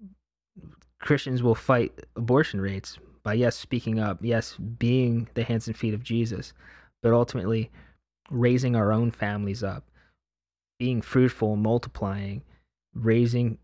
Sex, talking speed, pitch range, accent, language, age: male, 125 wpm, 100-125 Hz, American, English, 20-39